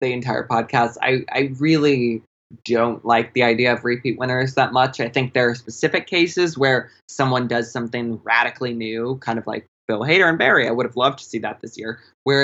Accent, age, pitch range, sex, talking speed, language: American, 20-39, 115-135 Hz, male, 210 wpm, English